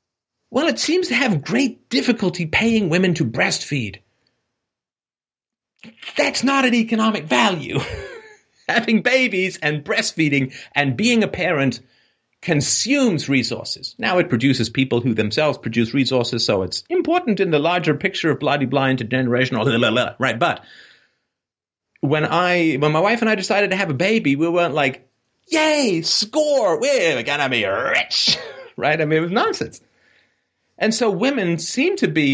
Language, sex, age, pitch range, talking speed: English, male, 40-59, 135-220 Hz, 150 wpm